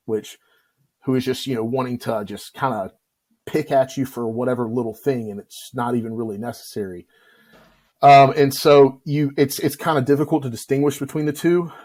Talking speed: 190 wpm